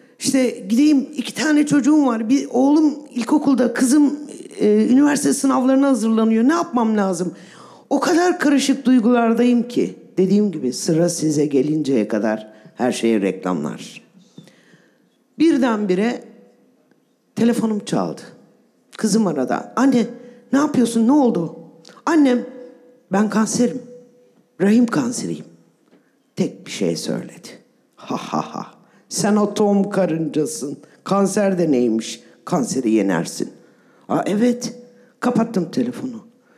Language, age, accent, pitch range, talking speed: Turkish, 50-69, native, 205-265 Hz, 105 wpm